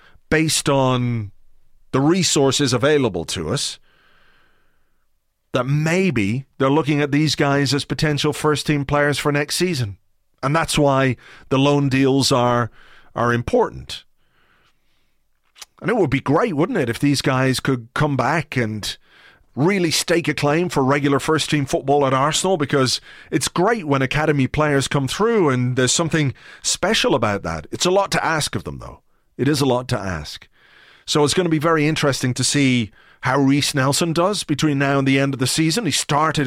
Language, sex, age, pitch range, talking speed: English, male, 30-49, 130-150 Hz, 175 wpm